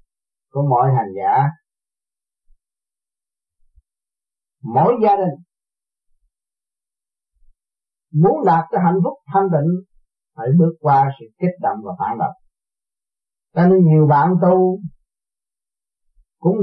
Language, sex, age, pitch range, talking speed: Vietnamese, male, 40-59, 135-190 Hz, 105 wpm